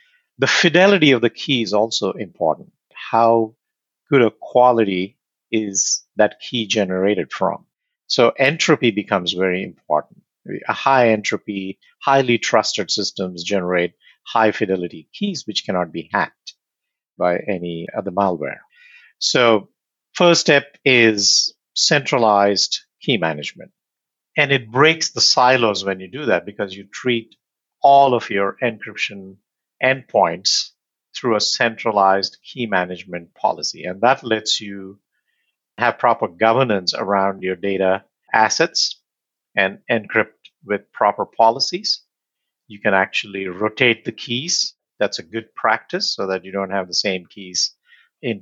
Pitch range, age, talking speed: 95-135 Hz, 50-69, 130 wpm